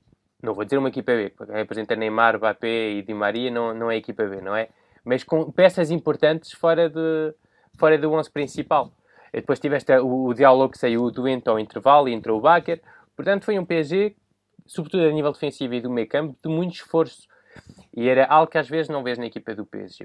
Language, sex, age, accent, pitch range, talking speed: Portuguese, male, 20-39, Brazilian, 115-150 Hz, 220 wpm